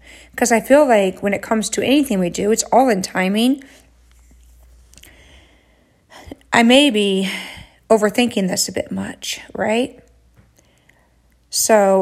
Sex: female